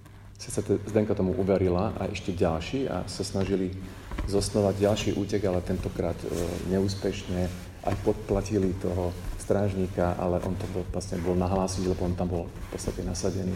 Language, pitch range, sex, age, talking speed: Slovak, 90-105 Hz, male, 40-59, 150 wpm